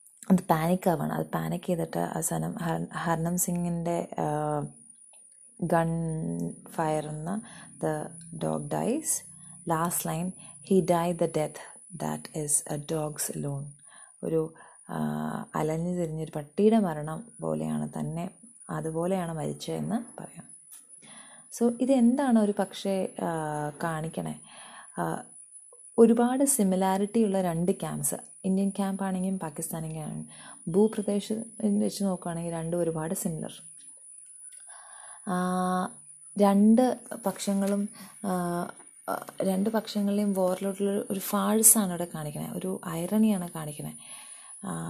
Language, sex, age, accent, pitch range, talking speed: English, female, 30-49, Indian, 165-210 Hz, 55 wpm